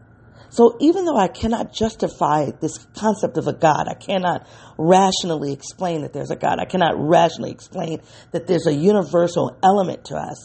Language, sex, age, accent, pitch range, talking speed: English, female, 40-59, American, 120-180 Hz, 170 wpm